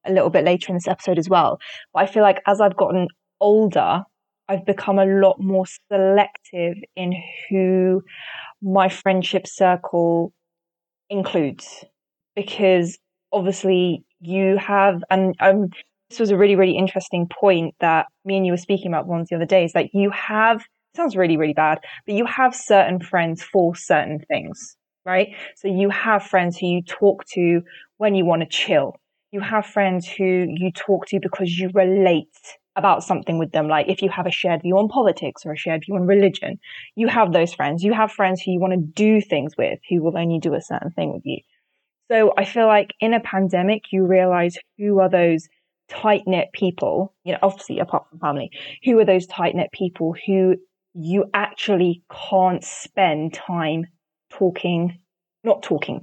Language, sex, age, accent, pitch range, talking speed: English, female, 20-39, British, 175-200 Hz, 180 wpm